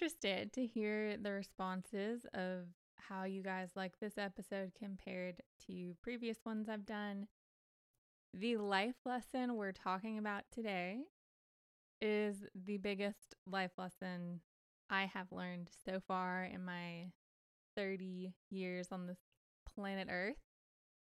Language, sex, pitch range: English, female, 190-230 Hz